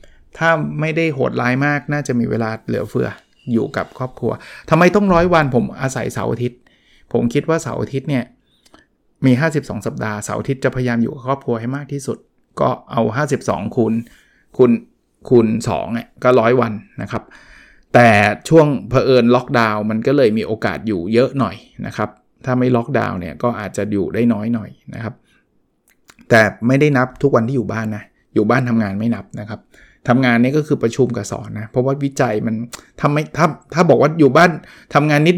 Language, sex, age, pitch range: Thai, male, 20-39, 115-145 Hz